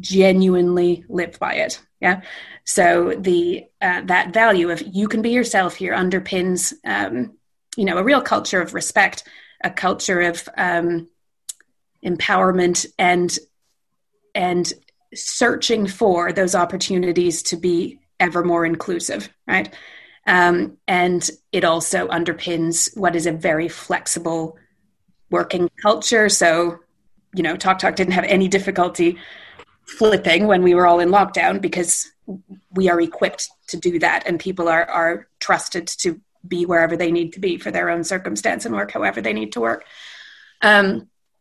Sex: female